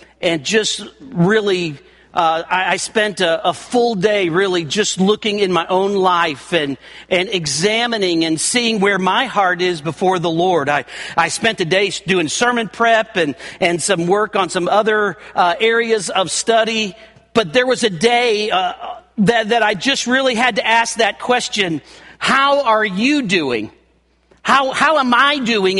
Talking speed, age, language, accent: 170 wpm, 50-69, English, American